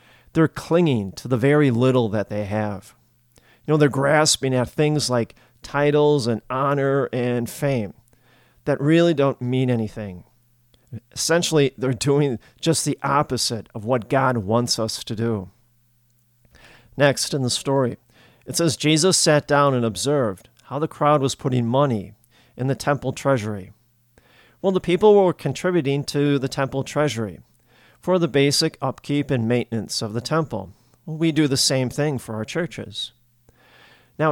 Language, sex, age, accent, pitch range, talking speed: English, male, 40-59, American, 120-150 Hz, 150 wpm